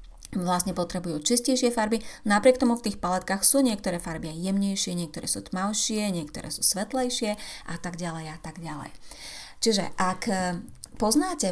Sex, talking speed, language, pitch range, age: female, 145 wpm, Slovak, 180-240 Hz, 30-49